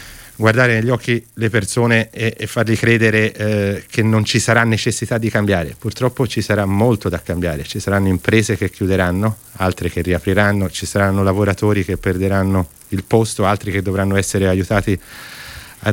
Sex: male